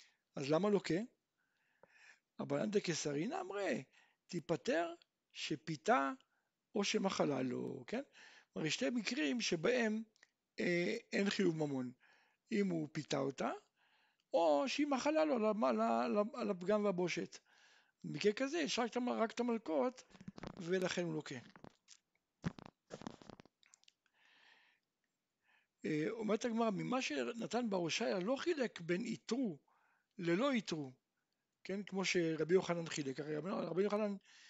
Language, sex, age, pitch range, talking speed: Hebrew, male, 60-79, 170-250 Hz, 110 wpm